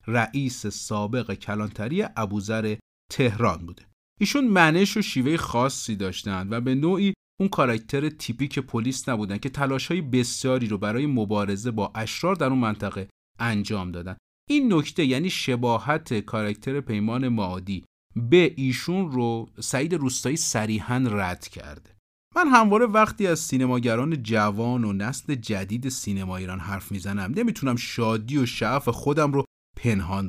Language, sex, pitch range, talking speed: Persian, male, 105-145 Hz, 135 wpm